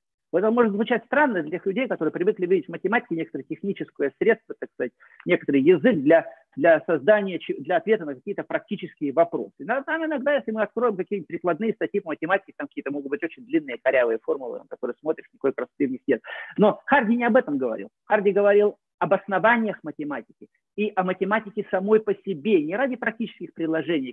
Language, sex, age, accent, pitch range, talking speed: Russian, male, 50-69, native, 155-235 Hz, 185 wpm